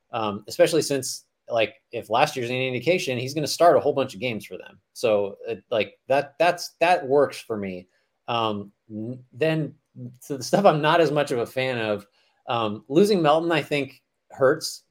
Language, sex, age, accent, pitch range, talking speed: English, male, 30-49, American, 110-150 Hz, 195 wpm